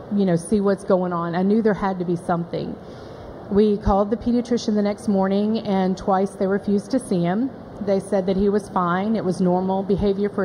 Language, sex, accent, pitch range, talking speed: English, female, American, 185-210 Hz, 220 wpm